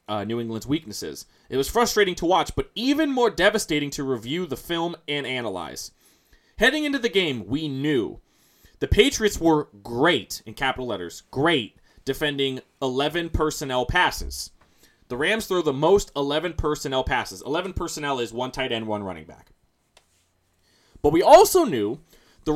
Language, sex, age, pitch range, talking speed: English, male, 20-39, 125-190 Hz, 155 wpm